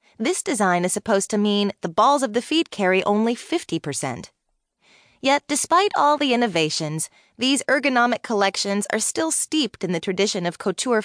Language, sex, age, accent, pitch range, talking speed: English, female, 20-39, American, 185-245 Hz, 170 wpm